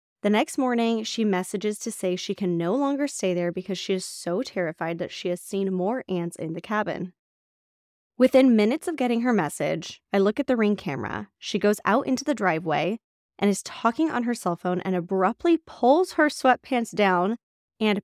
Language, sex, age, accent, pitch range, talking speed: English, female, 10-29, American, 175-230 Hz, 195 wpm